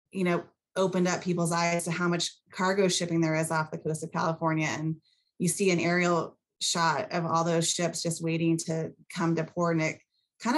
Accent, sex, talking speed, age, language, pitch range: American, female, 210 wpm, 20-39, English, 160-180 Hz